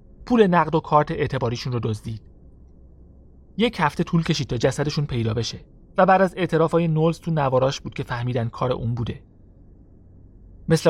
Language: Persian